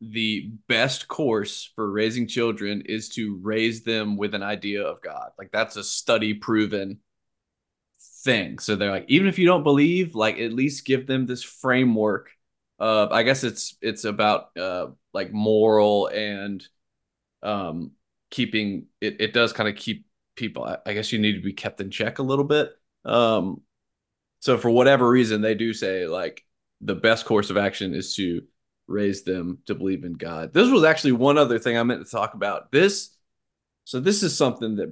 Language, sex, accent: English, male, American